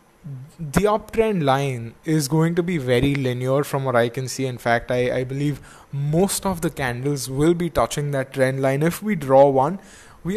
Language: English